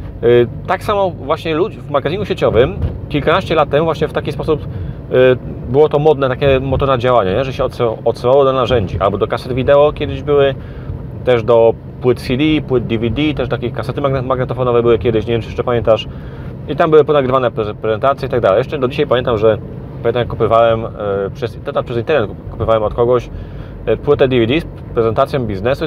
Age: 30-49